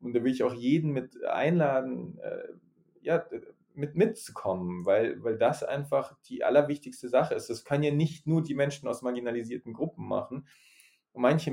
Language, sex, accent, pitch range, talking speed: German, male, German, 125-155 Hz, 170 wpm